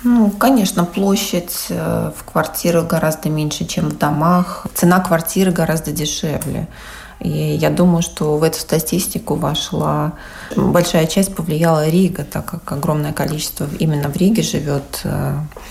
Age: 30-49